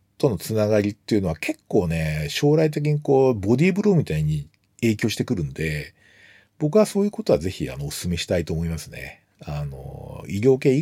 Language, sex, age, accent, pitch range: Japanese, male, 40-59, native, 100-160 Hz